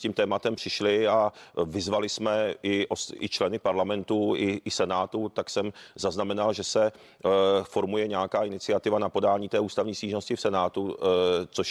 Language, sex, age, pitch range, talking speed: Czech, male, 40-59, 100-110 Hz, 150 wpm